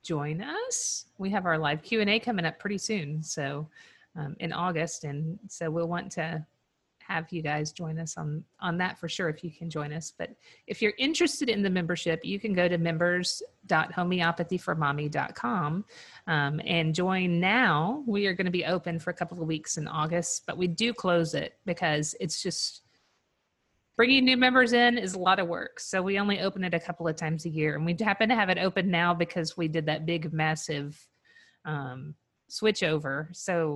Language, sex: English, female